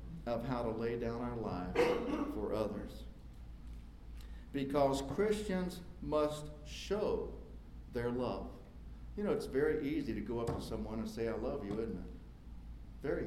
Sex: male